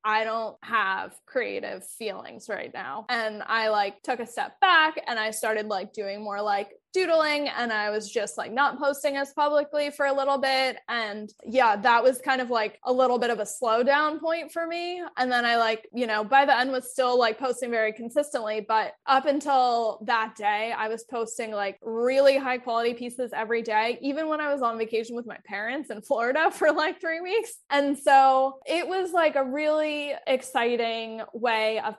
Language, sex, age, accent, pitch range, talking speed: English, female, 20-39, American, 225-285 Hz, 200 wpm